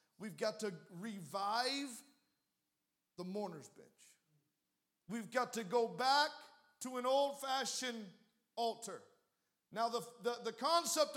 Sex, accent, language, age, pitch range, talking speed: male, American, English, 40-59, 225-270 Hz, 115 wpm